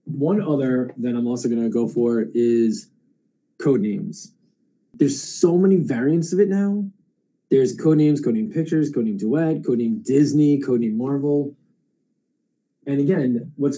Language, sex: English, male